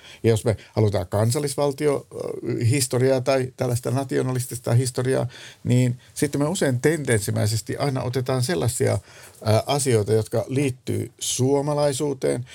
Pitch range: 105-130 Hz